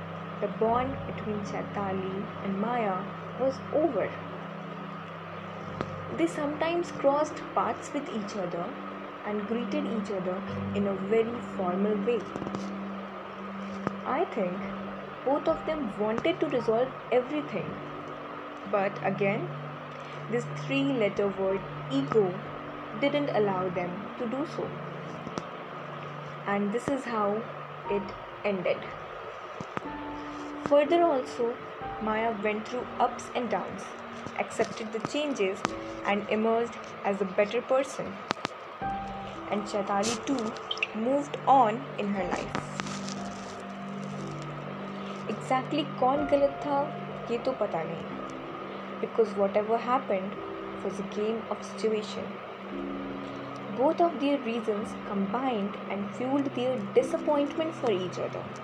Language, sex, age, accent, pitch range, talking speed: Hindi, female, 10-29, native, 195-255 Hz, 105 wpm